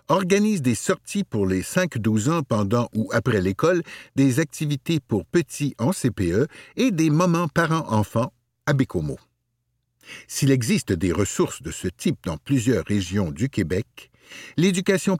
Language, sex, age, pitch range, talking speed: French, male, 60-79, 105-150 Hz, 140 wpm